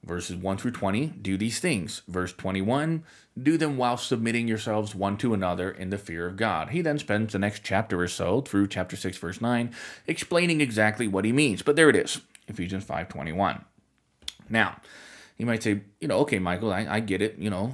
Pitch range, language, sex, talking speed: 95-125 Hz, English, male, 205 wpm